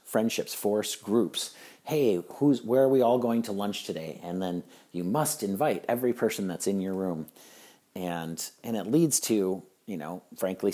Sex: male